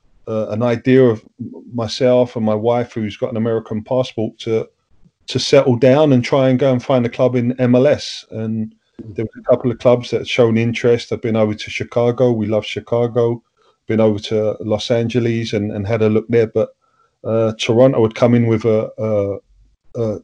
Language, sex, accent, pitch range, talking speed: English, male, British, 110-125 Hz, 200 wpm